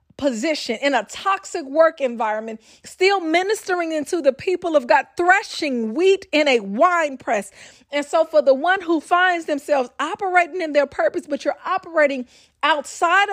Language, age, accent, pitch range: English, 40-59, American, 270-350 Hz